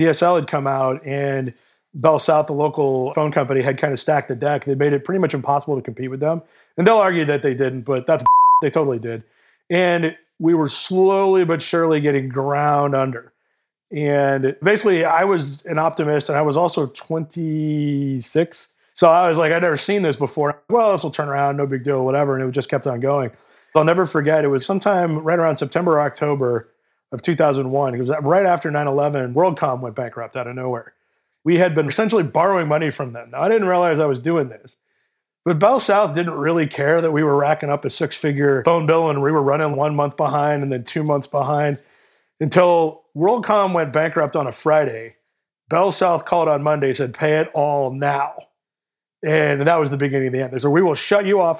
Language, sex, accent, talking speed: English, male, American, 210 wpm